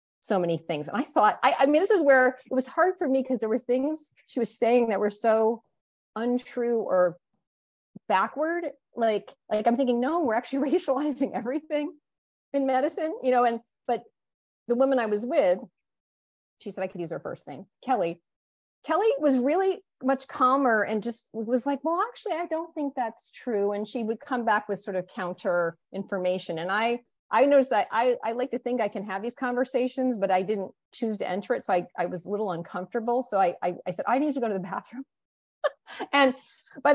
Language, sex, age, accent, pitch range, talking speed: English, female, 40-59, American, 205-270 Hz, 210 wpm